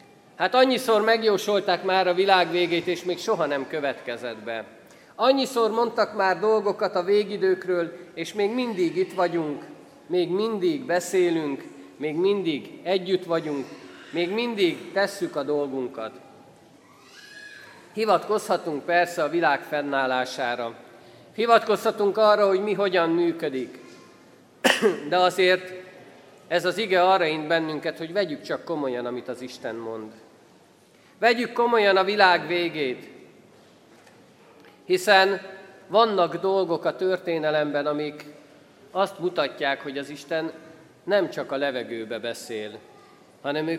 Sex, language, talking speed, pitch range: male, Hungarian, 120 wpm, 155-195 Hz